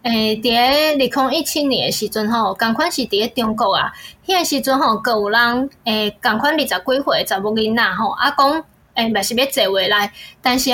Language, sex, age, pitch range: Chinese, female, 10-29, 230-305 Hz